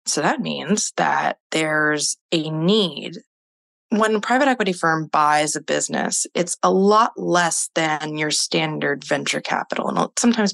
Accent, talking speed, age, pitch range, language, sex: American, 150 wpm, 20-39, 155-215 Hz, English, female